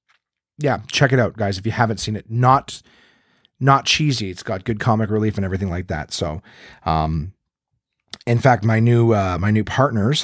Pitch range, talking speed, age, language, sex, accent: 105-135 Hz, 190 wpm, 30-49, English, male, American